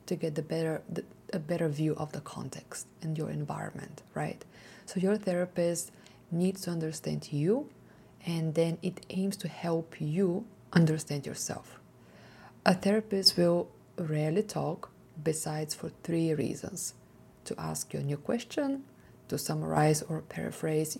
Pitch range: 155-190 Hz